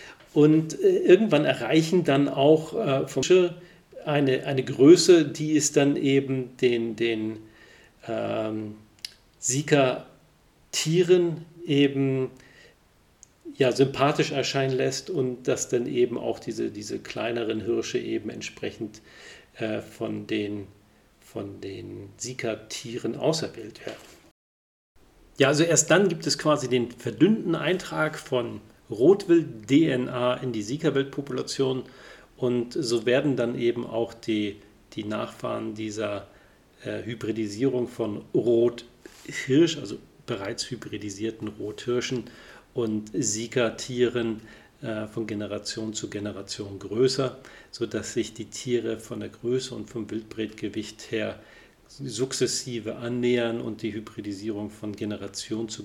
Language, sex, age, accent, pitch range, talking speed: German, male, 40-59, German, 110-140 Hz, 110 wpm